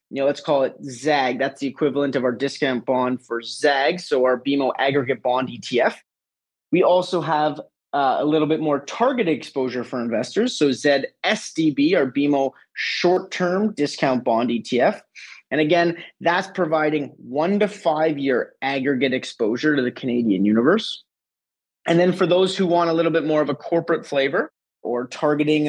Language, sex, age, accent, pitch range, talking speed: English, male, 30-49, American, 135-165 Hz, 170 wpm